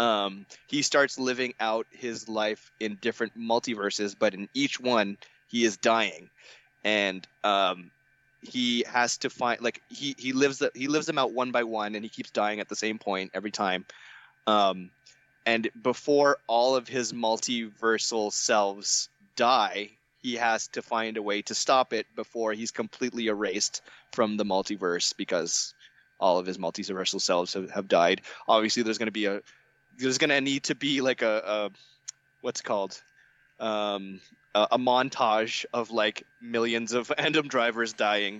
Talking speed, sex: 165 wpm, male